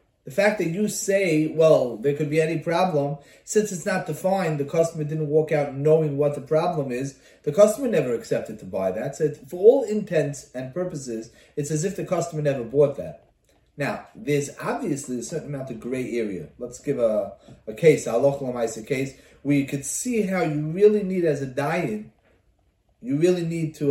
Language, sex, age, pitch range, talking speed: English, male, 30-49, 140-180 Hz, 195 wpm